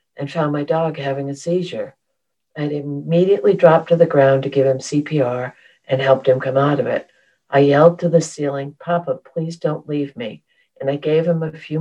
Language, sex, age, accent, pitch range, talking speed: English, female, 60-79, American, 130-150 Hz, 205 wpm